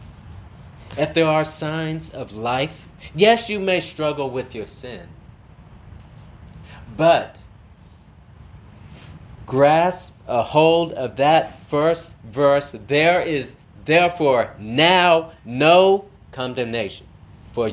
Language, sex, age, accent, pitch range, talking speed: English, male, 30-49, American, 100-160 Hz, 95 wpm